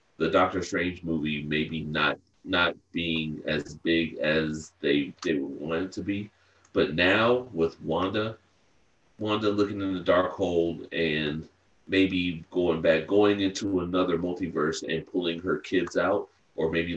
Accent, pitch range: American, 80-95 Hz